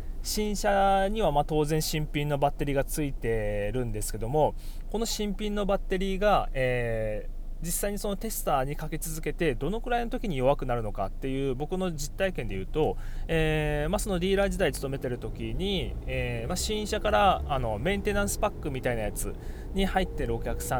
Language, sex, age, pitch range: Japanese, male, 20-39, 120-195 Hz